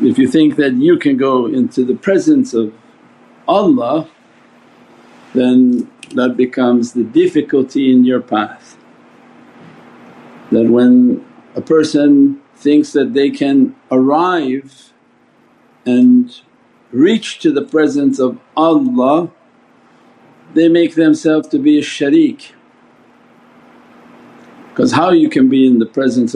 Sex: male